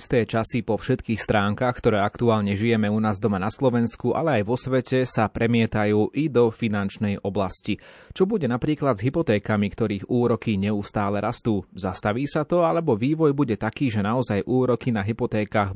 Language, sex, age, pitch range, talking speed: Slovak, male, 30-49, 105-125 Hz, 170 wpm